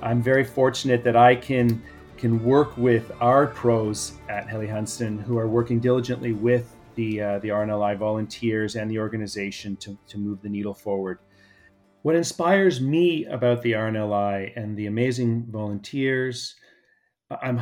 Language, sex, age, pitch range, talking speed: English, male, 40-59, 110-125 Hz, 145 wpm